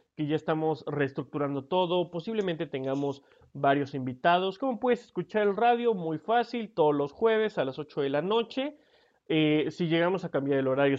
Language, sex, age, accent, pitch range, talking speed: Spanish, male, 30-49, Mexican, 140-195 Hz, 175 wpm